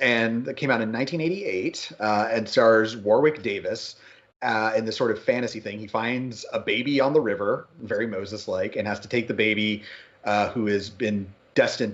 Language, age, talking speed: English, 30-49, 190 wpm